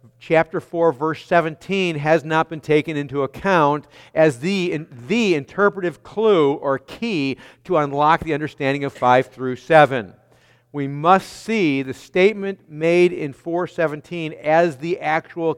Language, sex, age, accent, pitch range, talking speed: English, male, 50-69, American, 135-180 Hz, 140 wpm